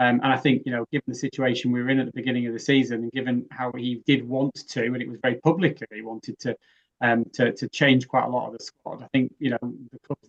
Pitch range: 120-140 Hz